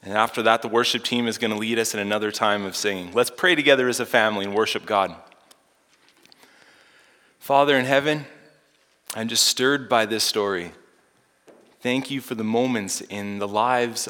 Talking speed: 180 wpm